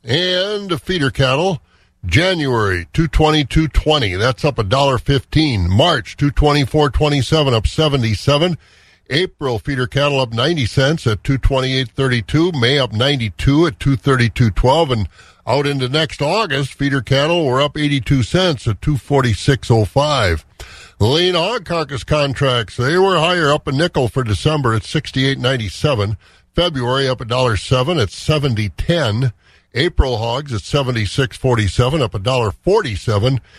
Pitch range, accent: 110-150 Hz, American